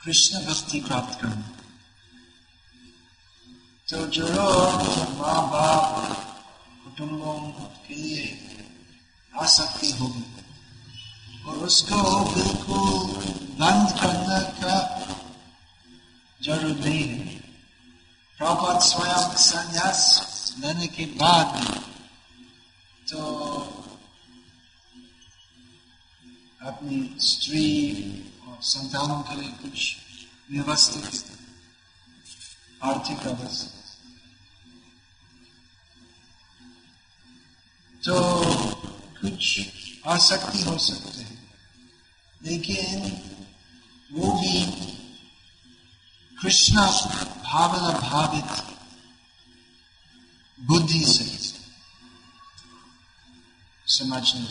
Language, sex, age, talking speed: Hindi, male, 50-69, 60 wpm